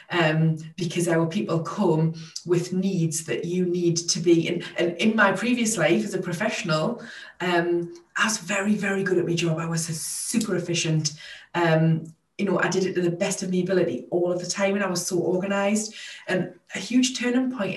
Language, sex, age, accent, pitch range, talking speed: English, female, 20-39, British, 180-220 Hz, 205 wpm